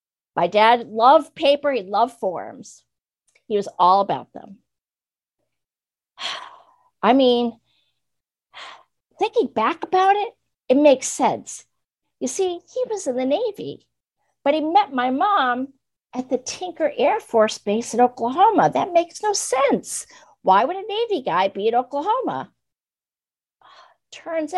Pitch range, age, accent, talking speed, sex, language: 235-370 Hz, 50-69, American, 130 wpm, female, English